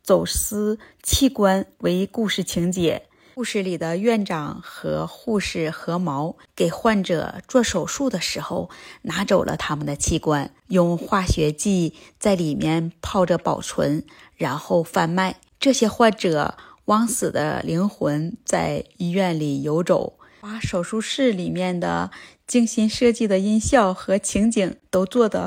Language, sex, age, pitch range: Chinese, female, 20-39, 170-220 Hz